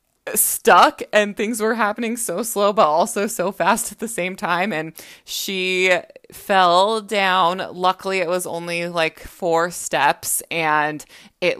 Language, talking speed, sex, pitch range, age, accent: English, 145 wpm, female, 170-220 Hz, 20-39, American